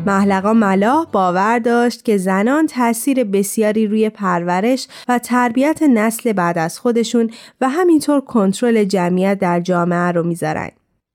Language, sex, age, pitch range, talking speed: Persian, female, 20-39, 190-250 Hz, 130 wpm